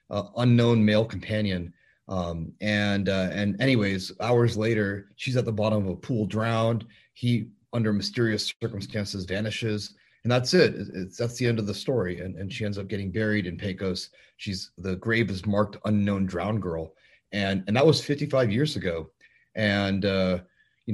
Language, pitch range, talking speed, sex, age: English, 95-115 Hz, 180 wpm, male, 30-49